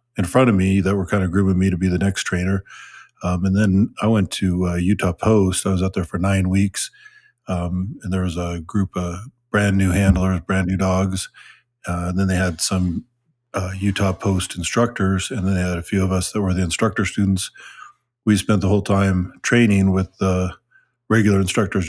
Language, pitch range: English, 95-105 Hz